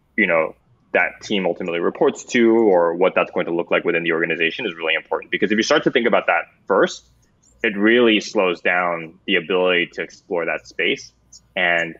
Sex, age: male, 20-39